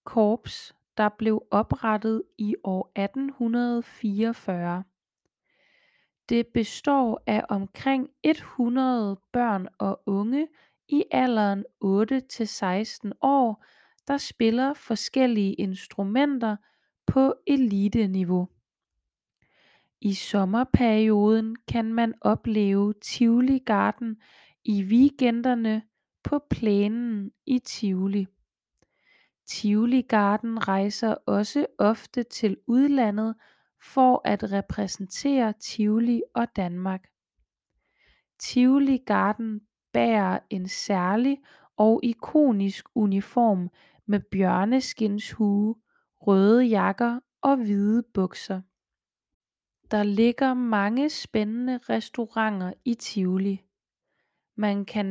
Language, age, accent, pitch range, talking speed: Danish, 20-39, native, 200-245 Hz, 80 wpm